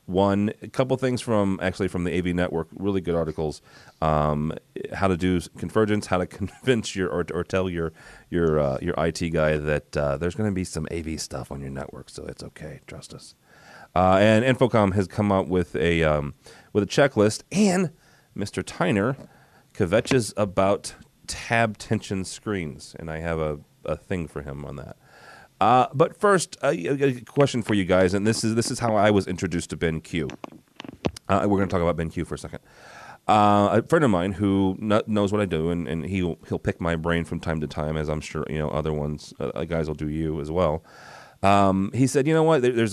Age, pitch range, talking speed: 30-49, 80-110 Hz, 215 wpm